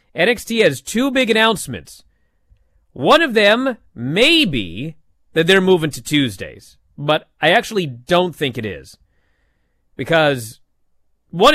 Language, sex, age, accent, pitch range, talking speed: English, male, 30-49, American, 125-185 Hz, 125 wpm